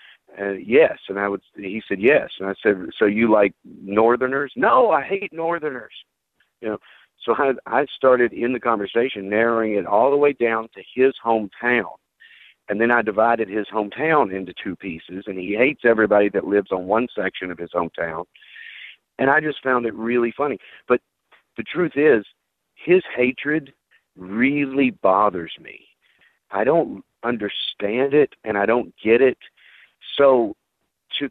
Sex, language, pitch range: male, English, 105-135 Hz